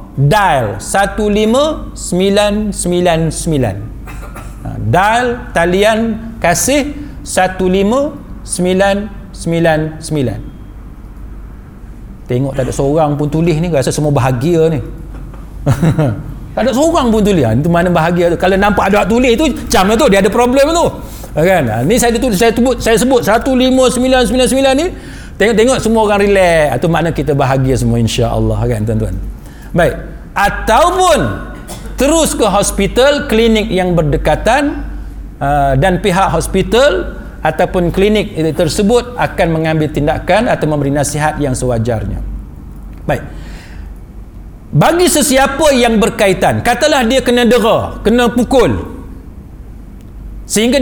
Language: Malay